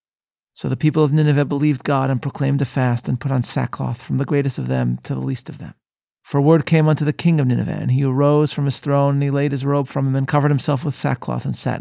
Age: 40-59